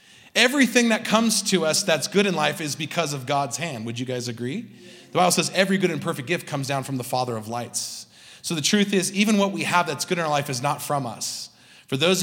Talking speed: 255 wpm